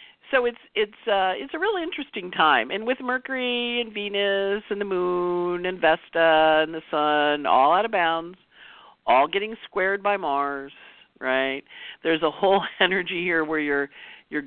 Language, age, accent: English, 50-69, American